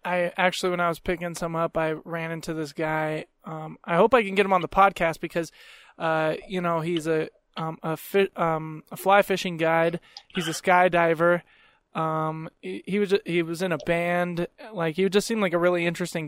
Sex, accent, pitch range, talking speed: male, American, 160-175 Hz, 210 wpm